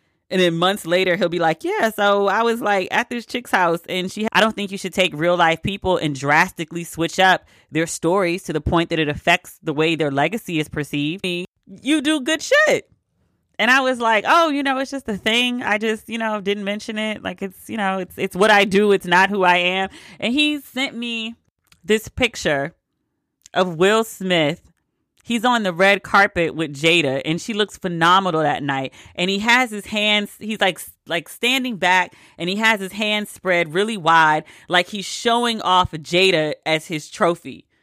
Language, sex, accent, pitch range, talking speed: English, female, American, 170-220 Hz, 205 wpm